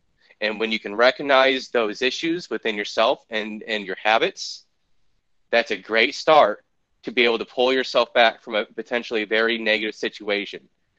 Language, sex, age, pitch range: English, male, 20-39, 115-140 Hz